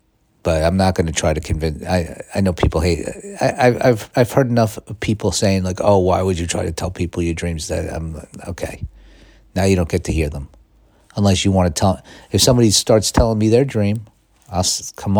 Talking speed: 220 wpm